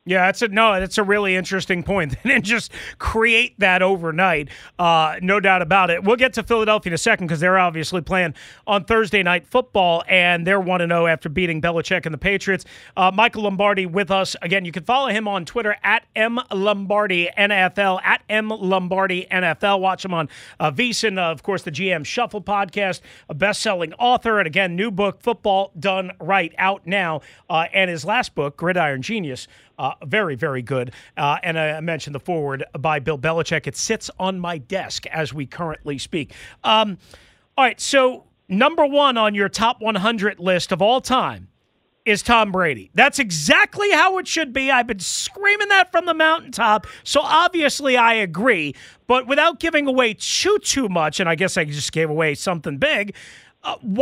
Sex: male